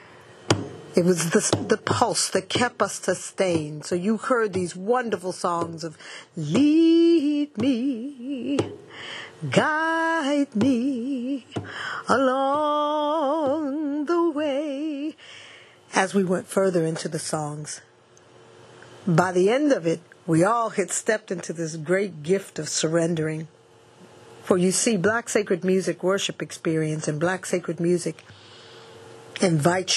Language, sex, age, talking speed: English, female, 40-59, 115 wpm